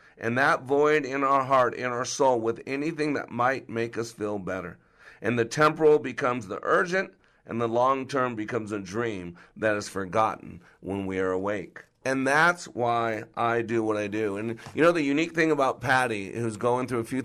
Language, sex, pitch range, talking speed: English, male, 115-145 Hz, 200 wpm